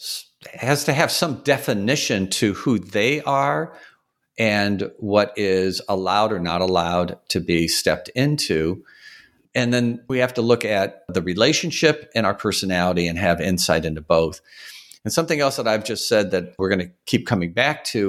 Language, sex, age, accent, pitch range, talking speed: English, male, 50-69, American, 95-125 Hz, 175 wpm